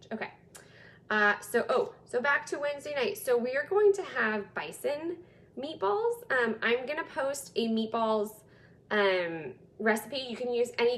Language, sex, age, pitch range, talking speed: English, female, 20-39, 185-235 Hz, 160 wpm